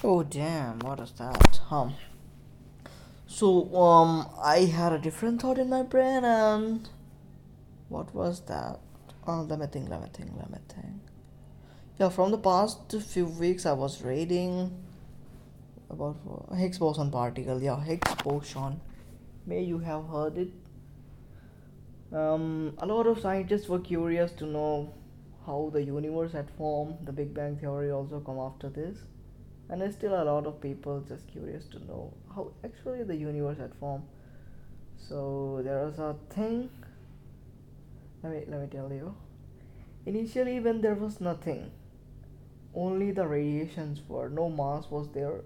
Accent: native